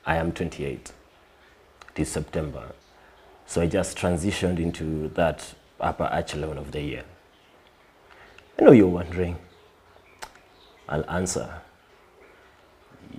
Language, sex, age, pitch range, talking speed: English, male, 30-49, 80-105 Hz, 110 wpm